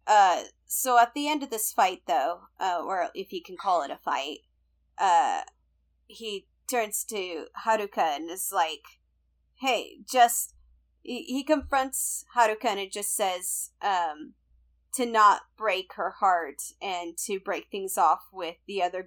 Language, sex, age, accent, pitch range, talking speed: English, female, 30-49, American, 200-280 Hz, 155 wpm